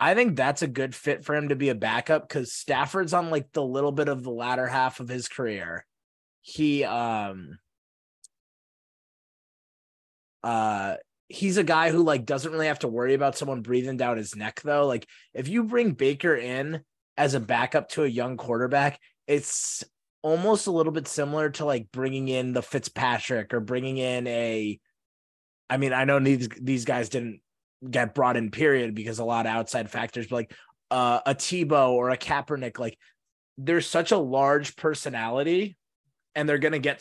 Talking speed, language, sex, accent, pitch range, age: 180 wpm, English, male, American, 125-155 Hz, 20-39